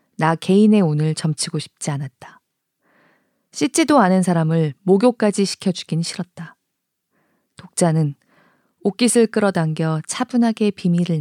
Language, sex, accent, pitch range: Korean, female, native, 155-230 Hz